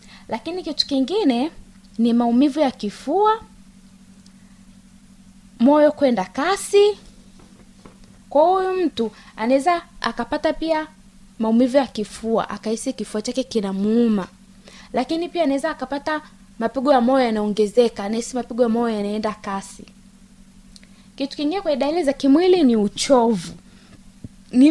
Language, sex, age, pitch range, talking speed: Swahili, female, 20-39, 200-275 Hz, 110 wpm